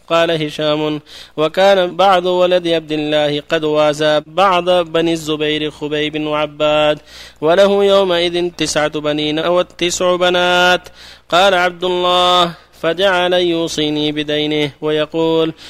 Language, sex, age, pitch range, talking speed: Arabic, male, 30-49, 155-180 Hz, 105 wpm